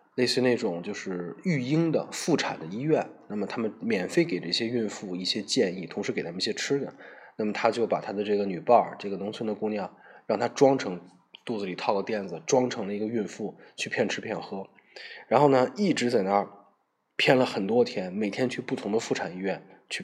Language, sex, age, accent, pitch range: Chinese, male, 20-39, native, 100-125 Hz